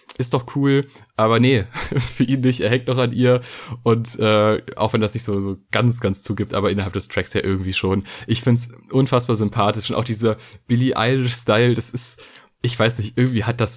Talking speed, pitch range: 220 wpm, 110-130 Hz